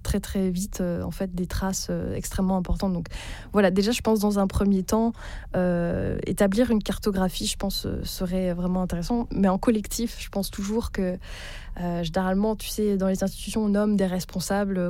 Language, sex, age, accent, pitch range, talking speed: French, female, 20-39, French, 185-215 Hz, 195 wpm